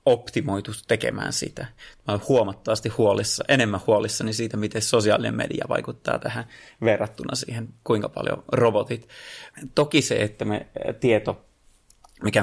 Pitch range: 100-125 Hz